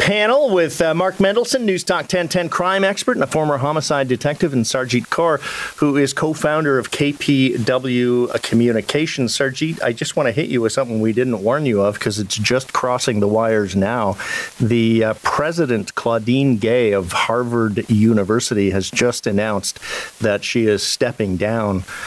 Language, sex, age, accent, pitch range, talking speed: English, male, 40-59, American, 110-140 Hz, 165 wpm